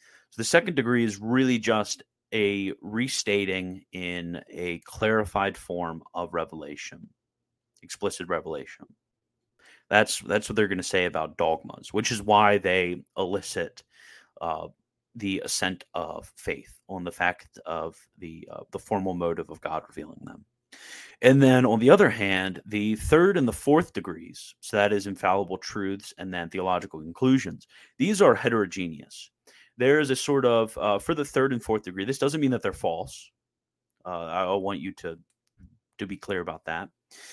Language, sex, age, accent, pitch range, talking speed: English, male, 30-49, American, 95-120 Hz, 165 wpm